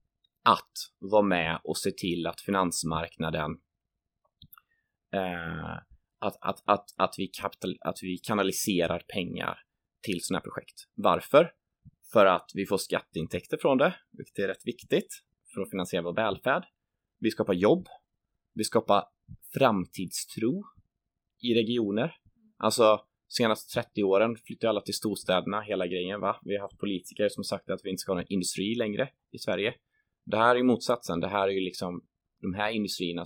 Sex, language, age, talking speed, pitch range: male, Swedish, 20-39, 160 wpm, 90-115 Hz